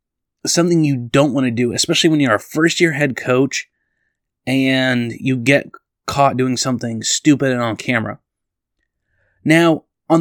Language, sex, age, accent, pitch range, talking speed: English, male, 20-39, American, 120-145 Hz, 145 wpm